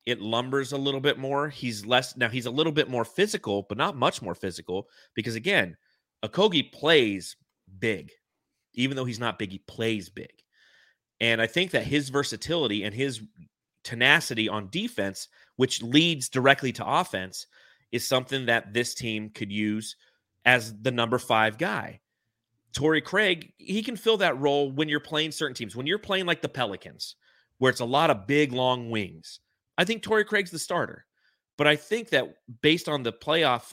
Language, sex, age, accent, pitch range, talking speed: English, male, 30-49, American, 110-150 Hz, 180 wpm